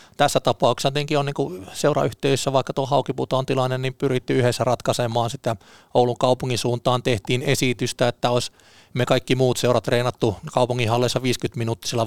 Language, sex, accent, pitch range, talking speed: Finnish, male, native, 105-125 Hz, 155 wpm